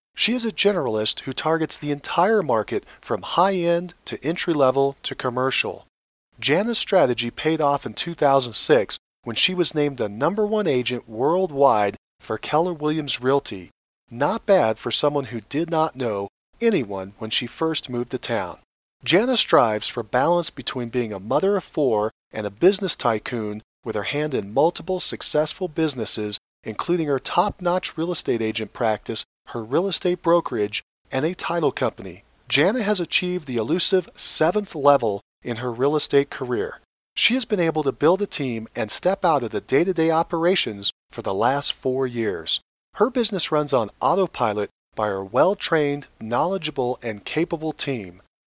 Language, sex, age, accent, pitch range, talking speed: English, male, 40-59, American, 120-180 Hz, 160 wpm